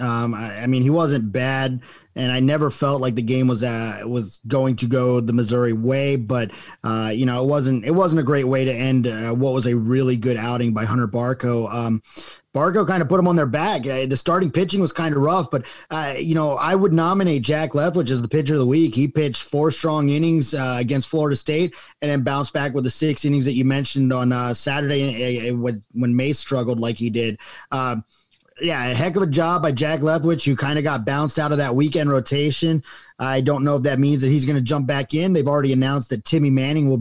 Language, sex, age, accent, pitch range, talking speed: English, male, 30-49, American, 125-155 Hz, 245 wpm